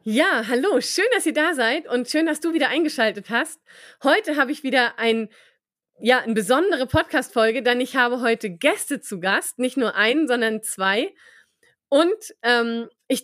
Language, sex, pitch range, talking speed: German, female, 230-305 Hz, 170 wpm